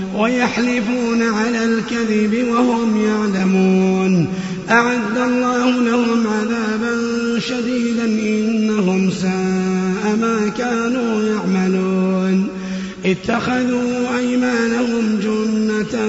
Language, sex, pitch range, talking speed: Arabic, male, 200-235 Hz, 65 wpm